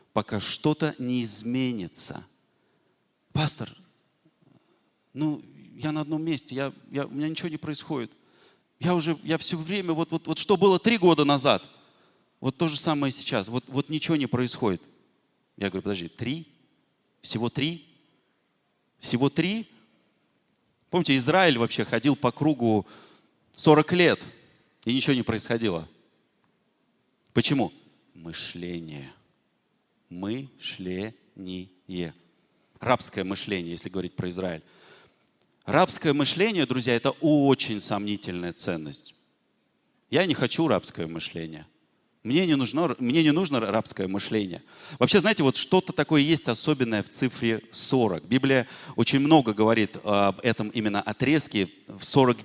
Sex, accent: male, native